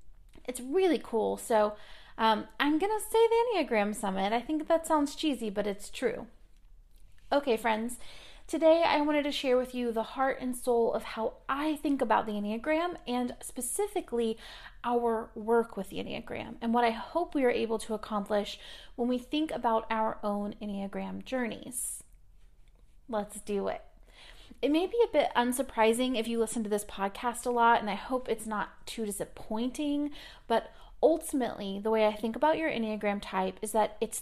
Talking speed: 175 wpm